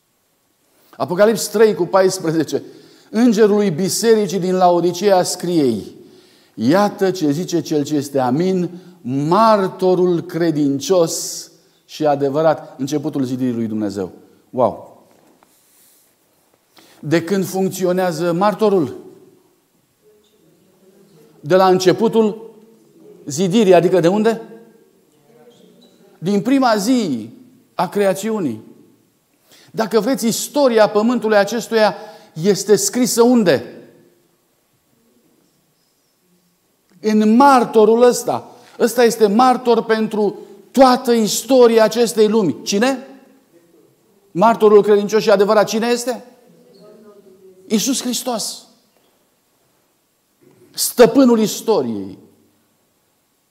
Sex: male